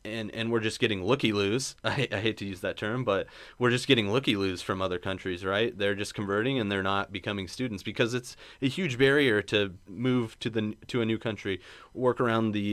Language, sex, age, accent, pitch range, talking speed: English, male, 30-49, American, 90-105 Hz, 225 wpm